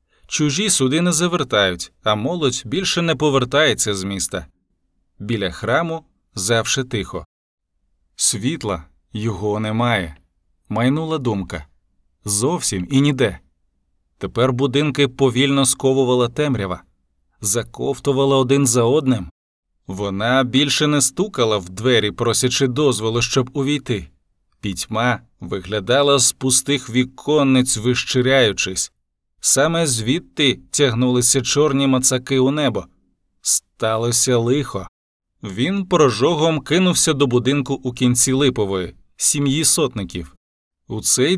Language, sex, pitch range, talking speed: Ukrainian, male, 100-145 Hz, 100 wpm